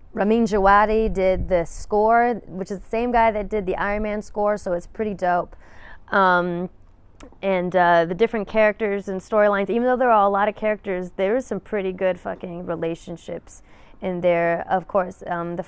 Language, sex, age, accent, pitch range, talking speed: English, female, 20-39, American, 160-190 Hz, 190 wpm